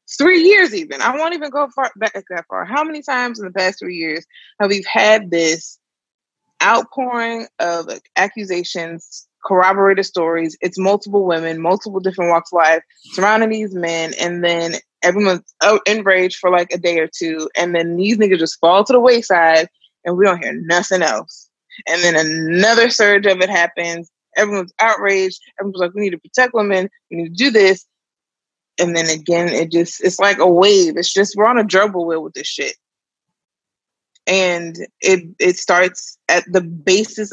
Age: 20-39